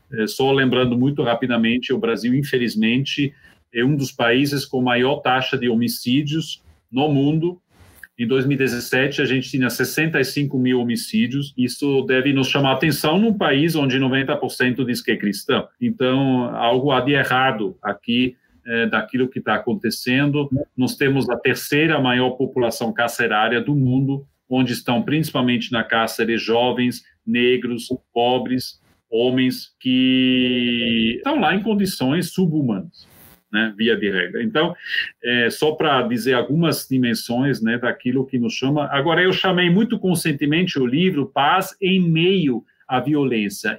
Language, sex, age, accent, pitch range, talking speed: Portuguese, male, 40-59, Brazilian, 125-165 Hz, 140 wpm